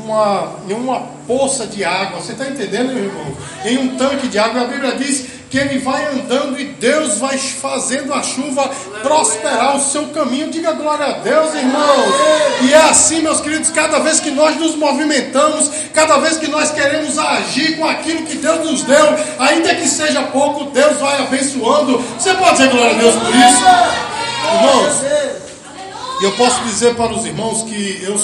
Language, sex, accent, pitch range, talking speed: Portuguese, male, Brazilian, 210-280 Hz, 180 wpm